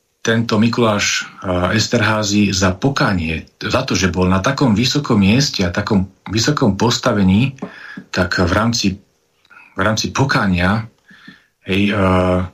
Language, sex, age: Slovak, male, 40-59